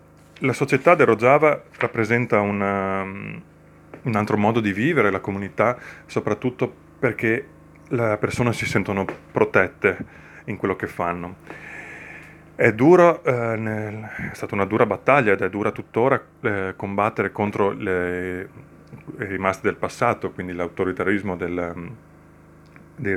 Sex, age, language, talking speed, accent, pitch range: male, 30-49, Italian, 125 wpm, native, 95-115 Hz